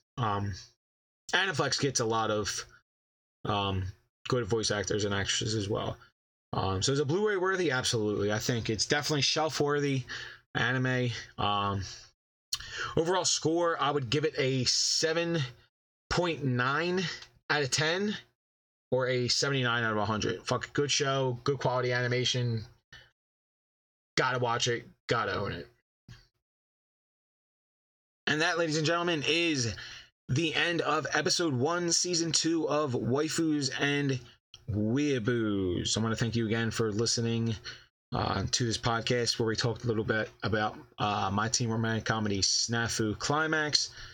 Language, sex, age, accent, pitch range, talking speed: English, male, 20-39, American, 110-140 Hz, 140 wpm